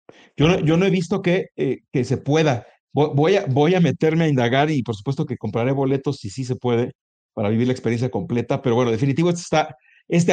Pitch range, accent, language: 130-165 Hz, Mexican, Spanish